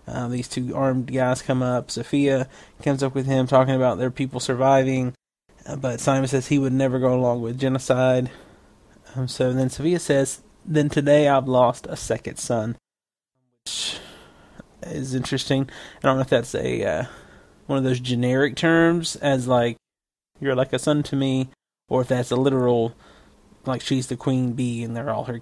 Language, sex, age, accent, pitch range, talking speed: English, male, 20-39, American, 125-145 Hz, 180 wpm